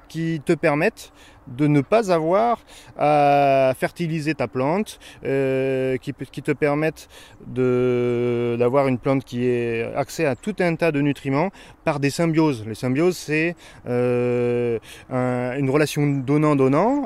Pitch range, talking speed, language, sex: 125-165 Hz, 140 wpm, French, male